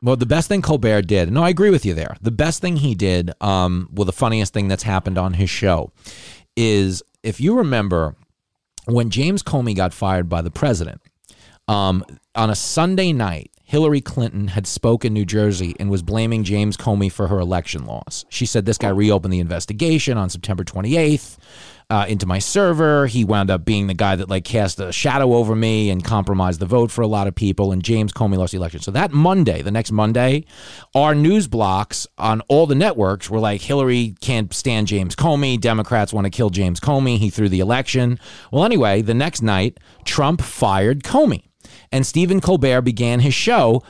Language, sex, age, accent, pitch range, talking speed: English, male, 30-49, American, 100-145 Hz, 200 wpm